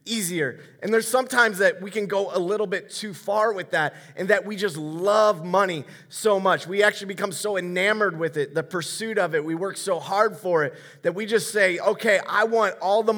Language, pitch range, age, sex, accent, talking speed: English, 145-205 Hz, 30-49, male, American, 225 wpm